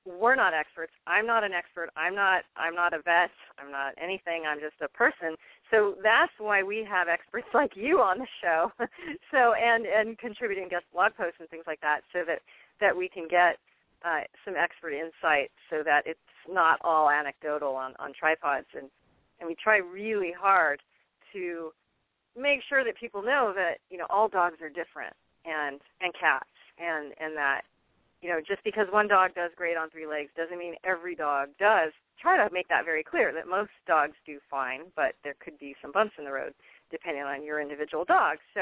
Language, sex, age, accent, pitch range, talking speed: English, female, 40-59, American, 160-210 Hz, 200 wpm